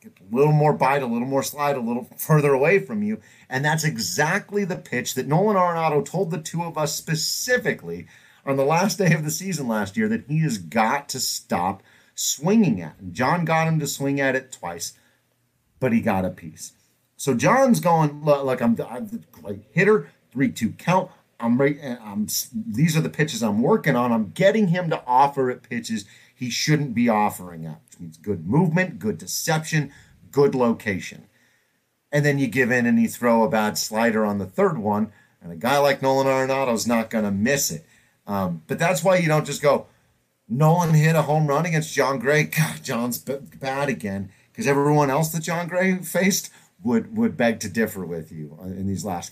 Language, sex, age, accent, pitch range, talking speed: English, male, 40-59, American, 110-165 Hz, 205 wpm